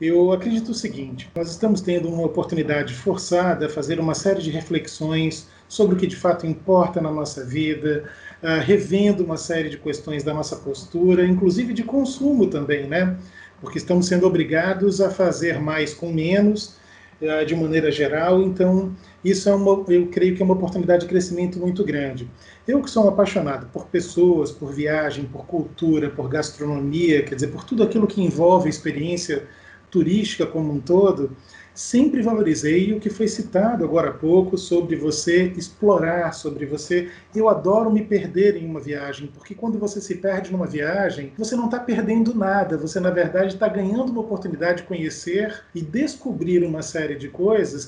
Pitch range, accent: 155-195 Hz, Brazilian